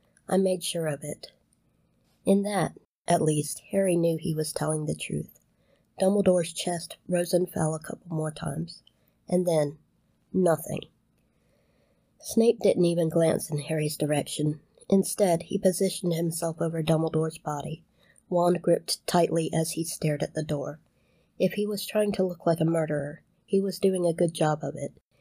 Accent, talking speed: American, 160 wpm